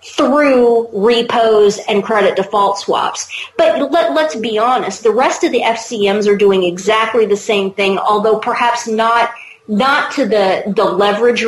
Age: 40-59